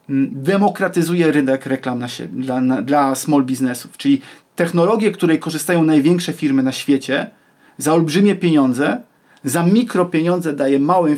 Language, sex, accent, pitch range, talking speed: Polish, male, native, 145-205 Hz, 135 wpm